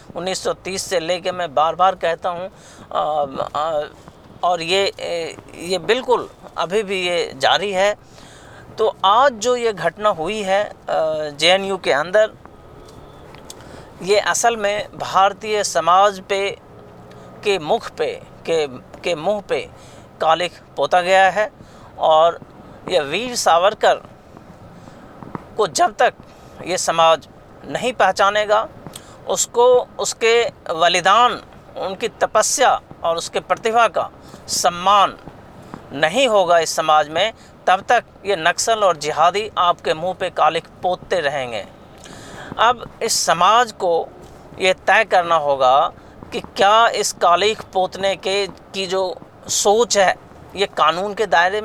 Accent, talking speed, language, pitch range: native, 120 wpm, Hindi, 175-220 Hz